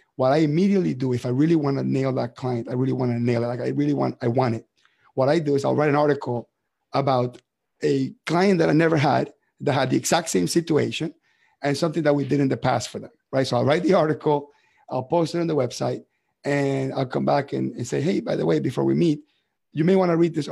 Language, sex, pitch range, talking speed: English, male, 125-155 Hz, 255 wpm